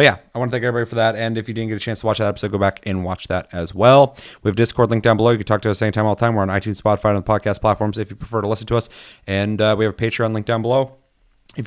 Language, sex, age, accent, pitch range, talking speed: English, male, 30-49, American, 95-115 Hz, 355 wpm